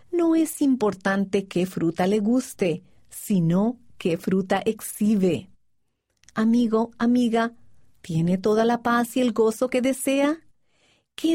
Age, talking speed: 40-59, 120 wpm